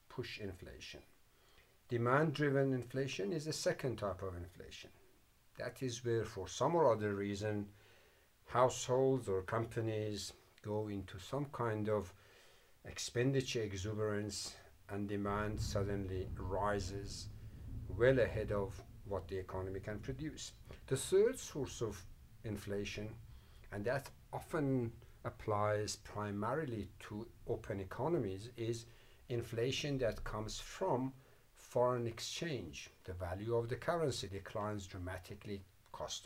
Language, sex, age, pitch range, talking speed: English, male, 50-69, 100-125 Hz, 115 wpm